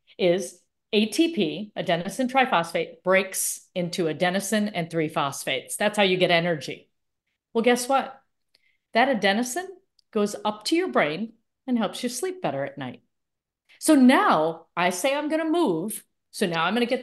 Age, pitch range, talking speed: 40-59, 185-275 Hz, 155 wpm